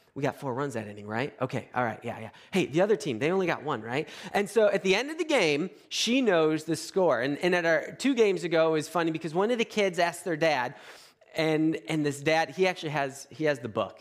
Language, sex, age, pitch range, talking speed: English, male, 30-49, 160-240 Hz, 265 wpm